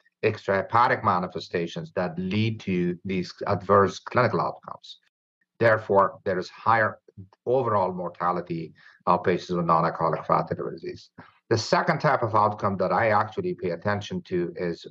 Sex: male